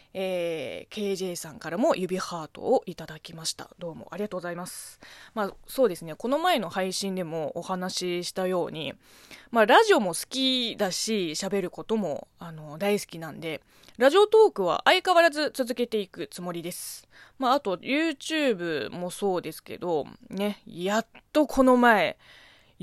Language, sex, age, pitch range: Japanese, female, 20-39, 180-295 Hz